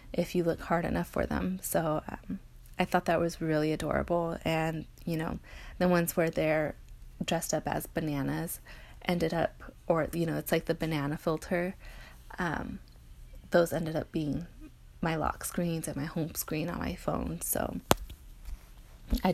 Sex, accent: female, American